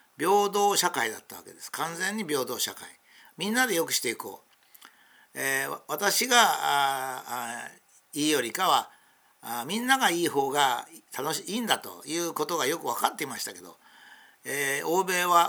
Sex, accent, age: male, native, 60-79